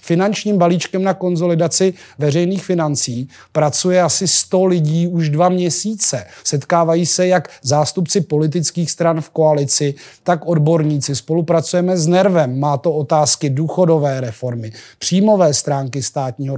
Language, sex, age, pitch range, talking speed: Czech, male, 30-49, 150-180 Hz, 125 wpm